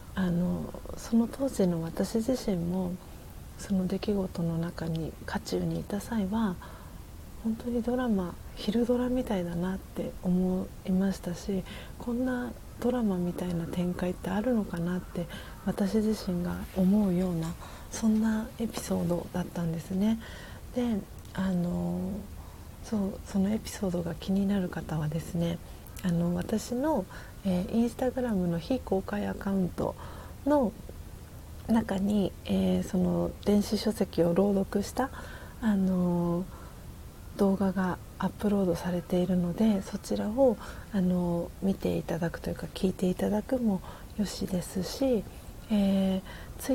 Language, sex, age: Japanese, female, 40-59